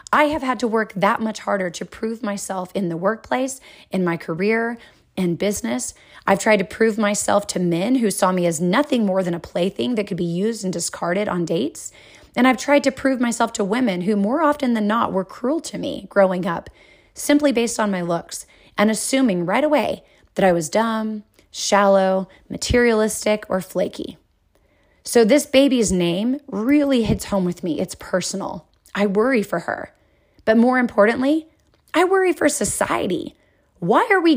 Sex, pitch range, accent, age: female, 195-270 Hz, American, 30-49